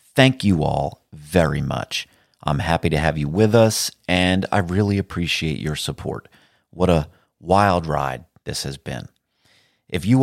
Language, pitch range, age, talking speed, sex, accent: English, 80-110 Hz, 40-59, 160 wpm, male, American